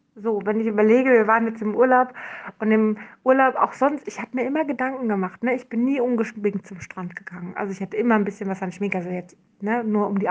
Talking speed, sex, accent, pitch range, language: 250 wpm, female, German, 205-245 Hz, German